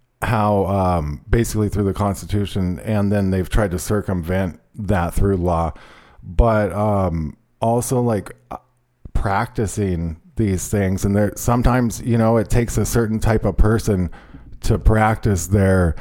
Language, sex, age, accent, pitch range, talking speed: English, male, 40-59, American, 95-115 Hz, 140 wpm